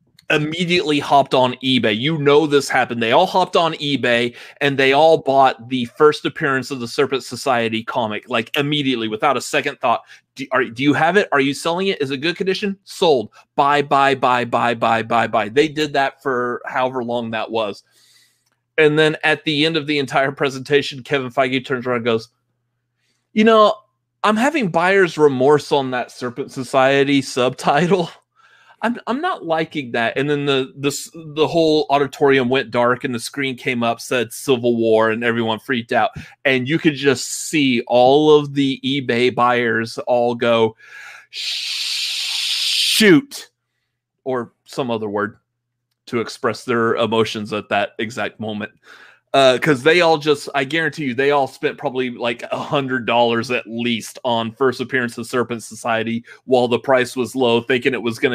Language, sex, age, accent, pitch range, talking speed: English, male, 30-49, American, 120-150 Hz, 175 wpm